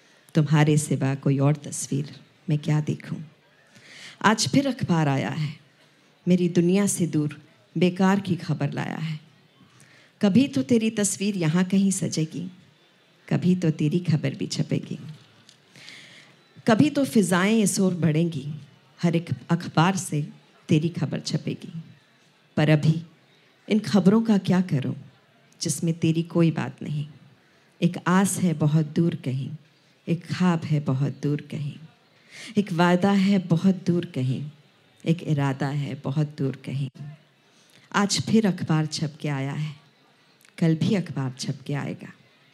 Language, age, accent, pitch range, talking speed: Hindi, 50-69, native, 150-180 Hz, 135 wpm